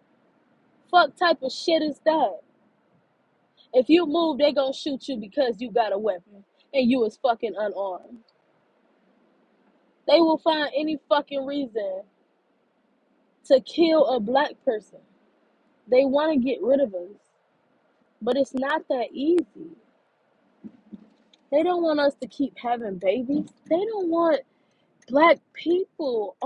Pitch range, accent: 225-295 Hz, American